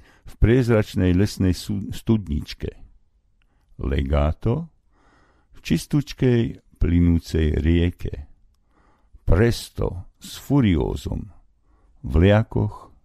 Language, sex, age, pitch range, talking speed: Slovak, male, 50-69, 80-105 Hz, 65 wpm